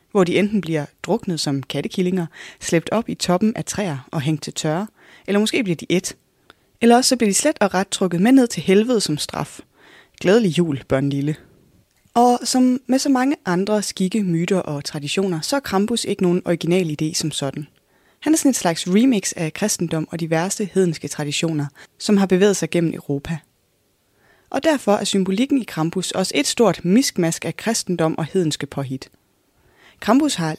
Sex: female